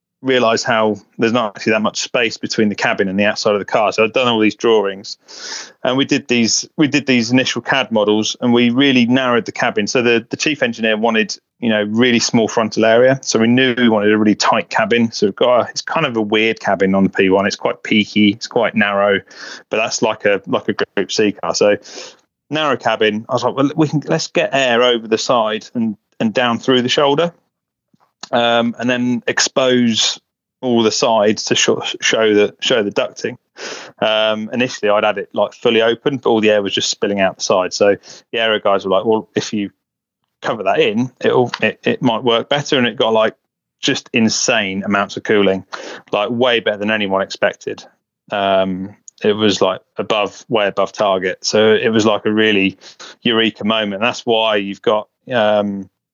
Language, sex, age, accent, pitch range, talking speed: English, male, 30-49, British, 105-120 Hz, 205 wpm